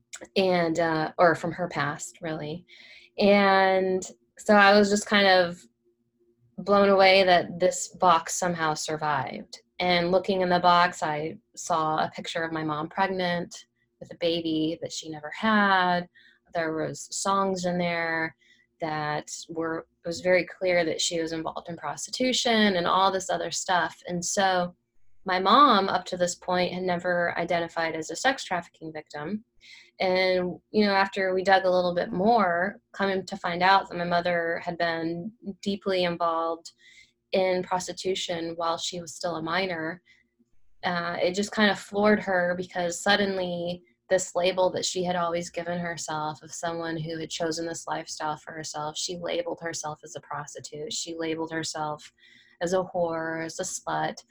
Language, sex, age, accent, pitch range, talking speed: English, female, 20-39, American, 160-185 Hz, 165 wpm